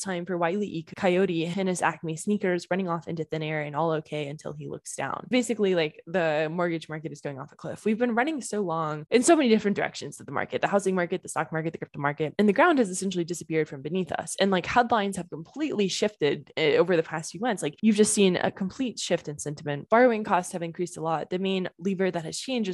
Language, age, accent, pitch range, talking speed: English, 10-29, American, 165-215 Hz, 245 wpm